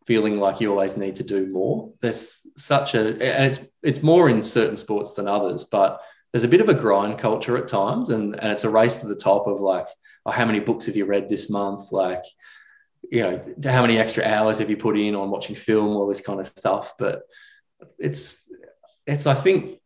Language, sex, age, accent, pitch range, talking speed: English, male, 20-39, Australian, 95-115 Hz, 220 wpm